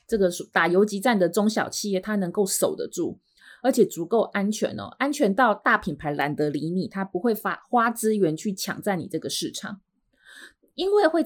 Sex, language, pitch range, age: female, Chinese, 180-260 Hz, 20-39